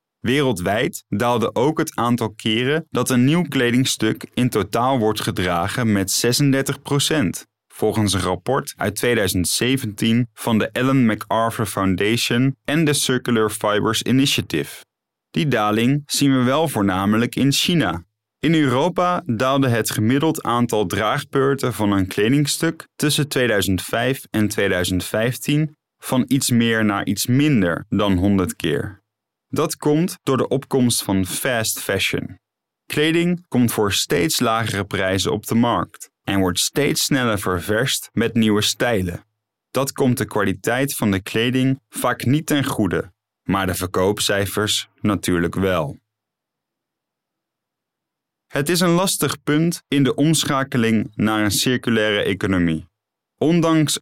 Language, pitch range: Dutch, 105-135 Hz